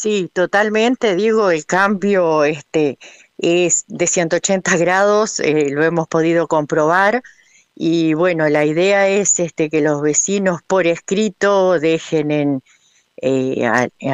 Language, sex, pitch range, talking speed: Spanish, female, 140-180 Hz, 125 wpm